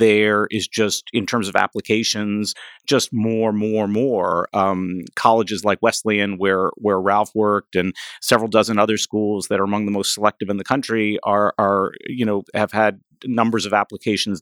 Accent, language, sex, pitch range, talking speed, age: American, English, male, 100-115 Hz, 175 wpm, 50-69